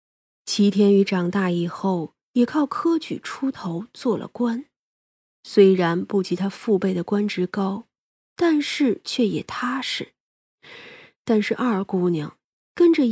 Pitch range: 180-245 Hz